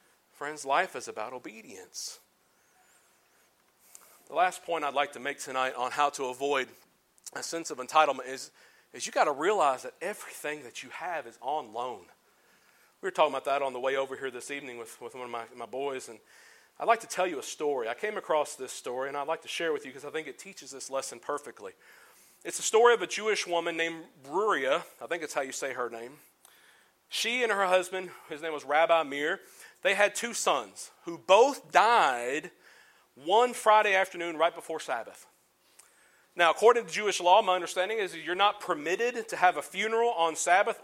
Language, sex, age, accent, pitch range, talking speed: English, male, 40-59, American, 145-215 Hz, 205 wpm